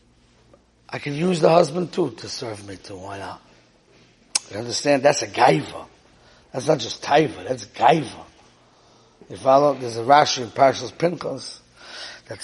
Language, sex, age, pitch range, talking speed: English, male, 60-79, 125-175 Hz, 155 wpm